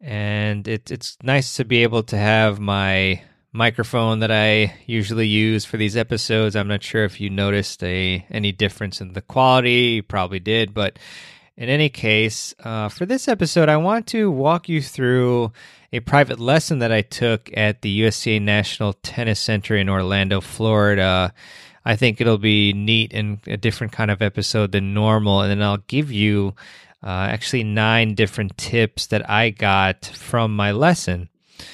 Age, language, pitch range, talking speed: 20-39, English, 105-125 Hz, 170 wpm